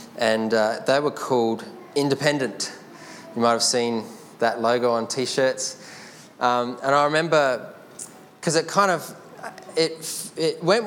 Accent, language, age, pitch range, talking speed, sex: Australian, English, 20-39, 120-155 Hz, 130 wpm, male